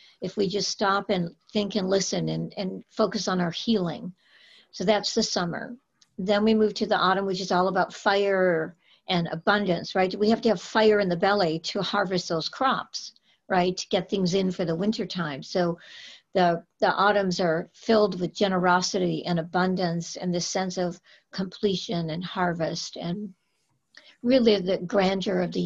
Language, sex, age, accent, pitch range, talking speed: English, female, 60-79, American, 180-220 Hz, 175 wpm